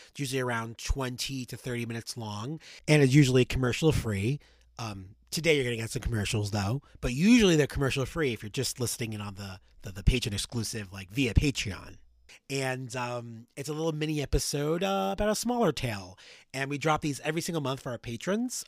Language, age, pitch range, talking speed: English, 30-49, 115-155 Hz, 200 wpm